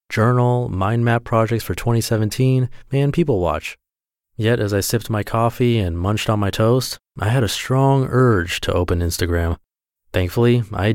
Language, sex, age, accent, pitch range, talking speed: English, male, 30-49, American, 90-120 Hz, 165 wpm